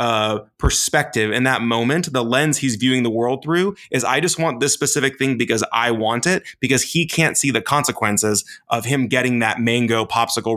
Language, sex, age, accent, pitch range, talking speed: English, male, 20-39, American, 115-145 Hz, 200 wpm